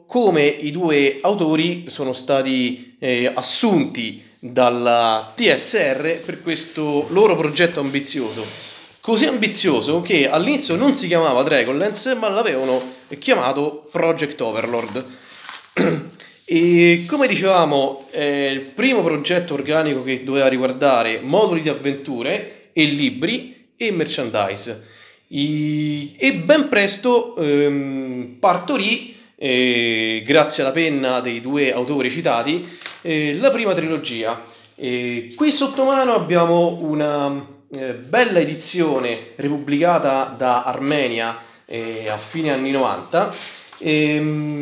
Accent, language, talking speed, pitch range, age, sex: native, Italian, 110 wpm, 130-170 Hz, 30-49, male